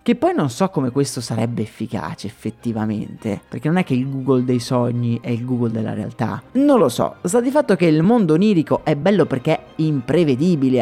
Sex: male